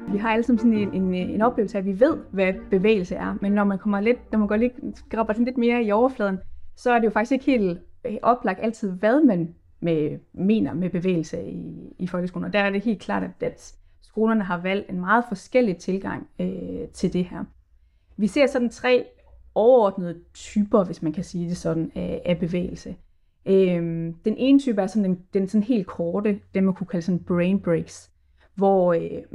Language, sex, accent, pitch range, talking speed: Danish, female, native, 175-220 Hz, 200 wpm